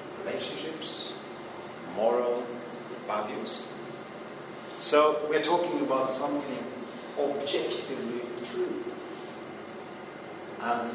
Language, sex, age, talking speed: English, male, 50-69, 60 wpm